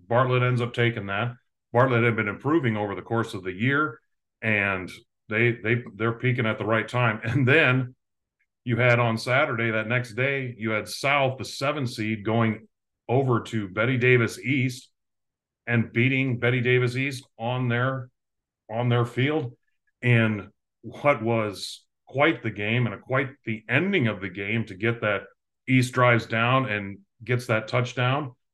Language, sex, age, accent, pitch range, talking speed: English, male, 40-59, American, 110-130 Hz, 165 wpm